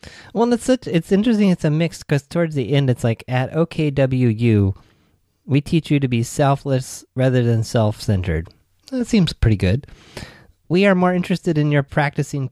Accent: American